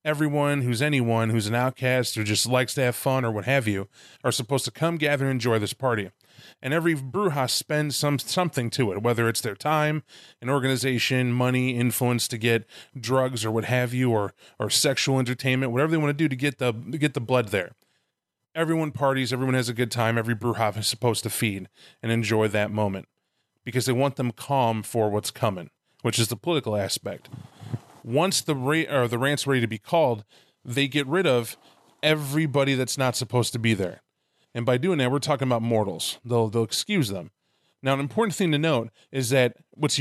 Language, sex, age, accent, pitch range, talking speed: English, male, 30-49, American, 115-145 Hz, 200 wpm